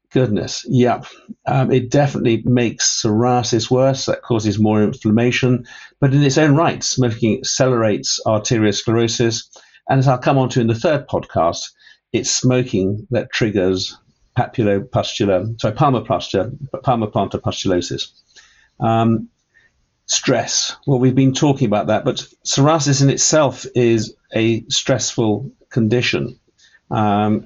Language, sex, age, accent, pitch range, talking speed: English, male, 50-69, British, 110-130 Hz, 120 wpm